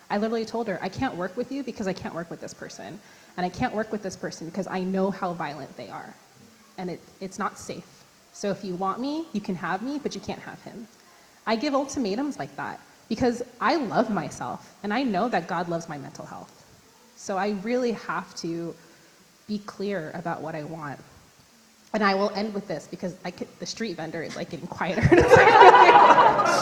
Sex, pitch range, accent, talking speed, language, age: female, 185-265 Hz, American, 215 wpm, English, 20-39